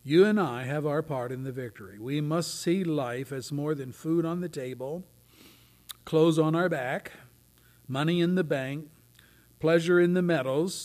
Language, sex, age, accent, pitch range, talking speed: English, male, 50-69, American, 110-155 Hz, 175 wpm